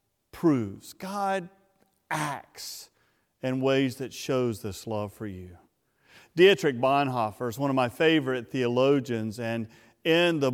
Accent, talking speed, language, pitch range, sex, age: American, 125 wpm, English, 120-195 Hz, male, 40-59